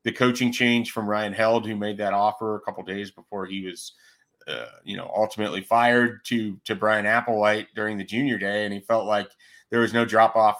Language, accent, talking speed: English, American, 220 wpm